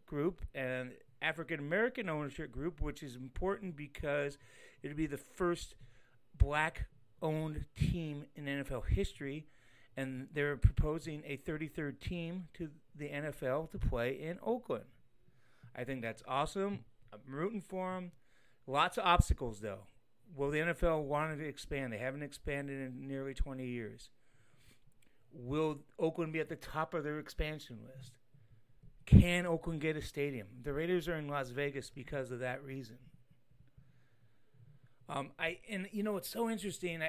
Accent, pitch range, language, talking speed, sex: American, 130-175 Hz, English, 145 wpm, male